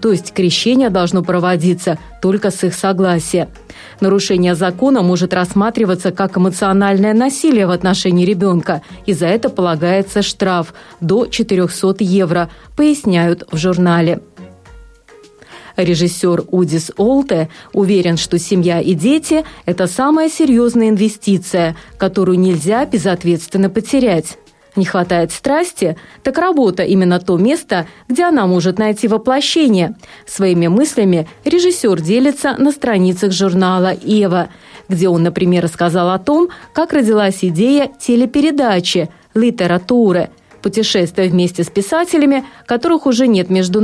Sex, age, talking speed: female, 30-49, 125 wpm